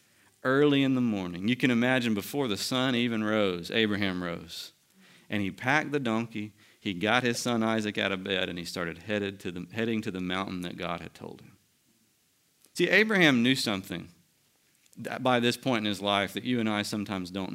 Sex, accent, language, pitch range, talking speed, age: male, American, English, 100-145 Hz, 200 wpm, 40-59